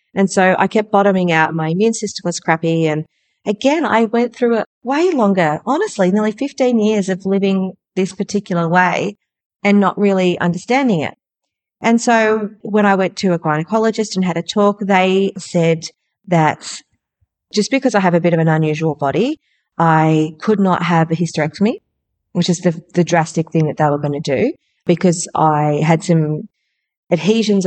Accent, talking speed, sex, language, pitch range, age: Australian, 175 wpm, female, English, 155-195 Hz, 40-59